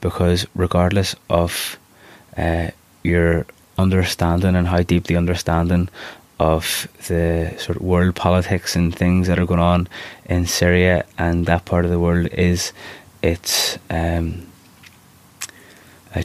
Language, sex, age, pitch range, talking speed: English, male, 20-39, 85-90 Hz, 130 wpm